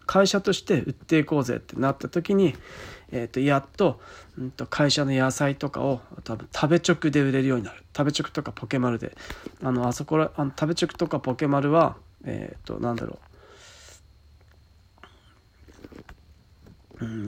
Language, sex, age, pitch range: Japanese, male, 40-59, 115-160 Hz